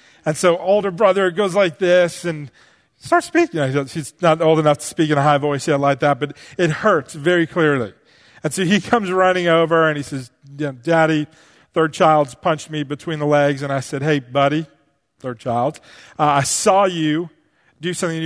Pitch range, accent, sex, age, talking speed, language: 140-175 Hz, American, male, 40-59, 205 wpm, English